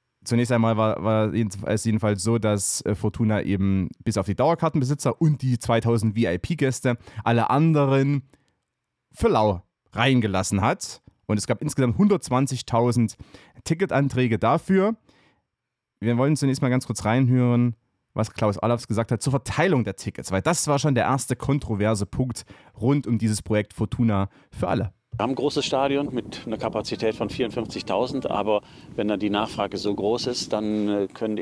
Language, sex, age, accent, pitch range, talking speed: German, male, 30-49, German, 100-125 Hz, 155 wpm